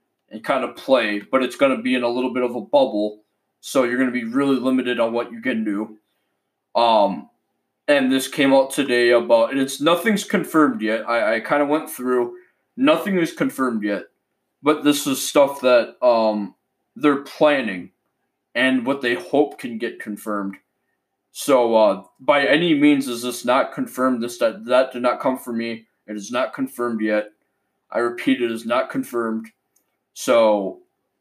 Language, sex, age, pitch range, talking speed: English, male, 20-39, 115-145 Hz, 180 wpm